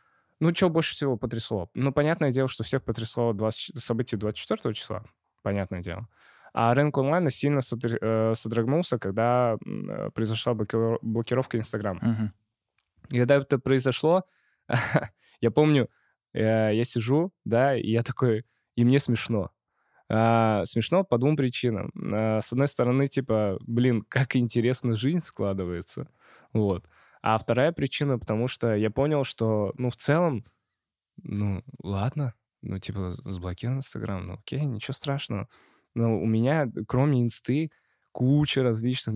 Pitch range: 110-130 Hz